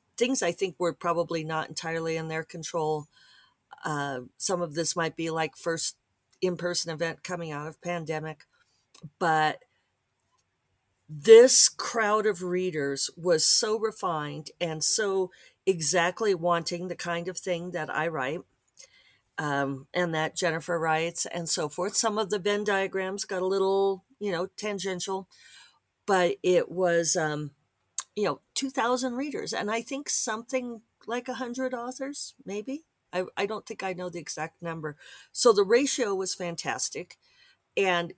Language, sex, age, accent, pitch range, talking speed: English, female, 50-69, American, 165-210 Hz, 150 wpm